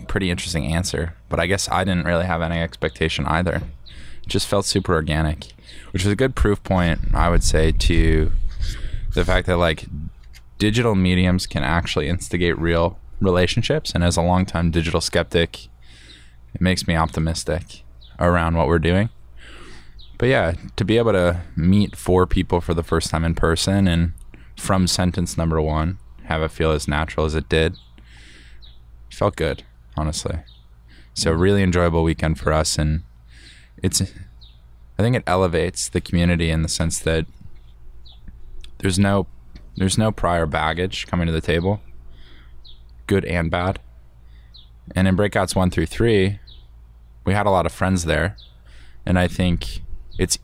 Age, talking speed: 10-29, 160 wpm